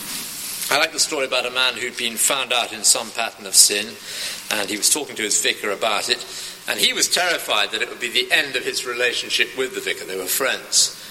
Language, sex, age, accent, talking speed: English, male, 50-69, British, 240 wpm